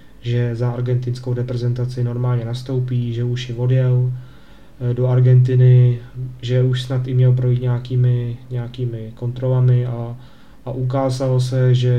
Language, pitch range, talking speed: Slovak, 125-135 Hz, 130 wpm